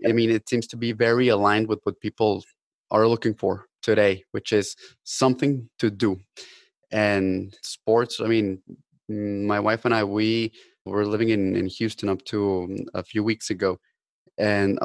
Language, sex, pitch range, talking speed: English, male, 100-115 Hz, 165 wpm